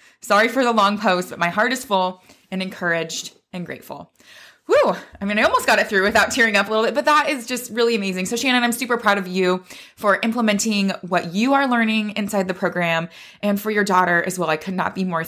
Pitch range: 180-215 Hz